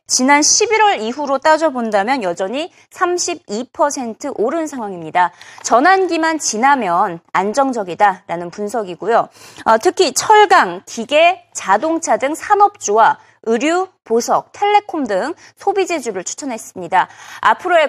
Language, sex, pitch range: Korean, female, 210-345 Hz